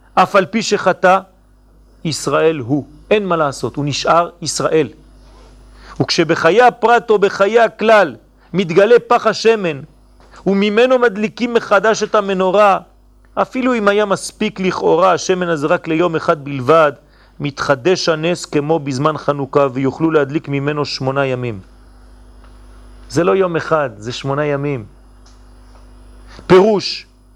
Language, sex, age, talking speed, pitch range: French, male, 40-59, 120 wpm, 145-220 Hz